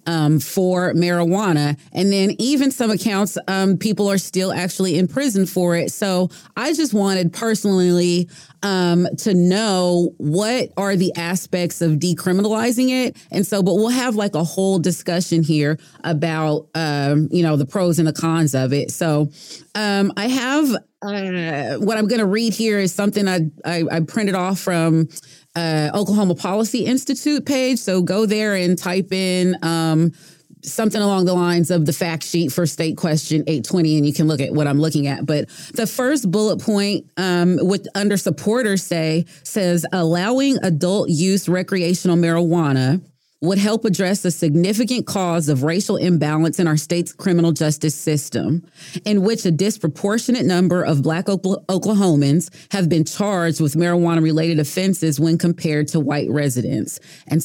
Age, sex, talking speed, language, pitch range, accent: 30-49, female, 160 wpm, English, 160-200 Hz, American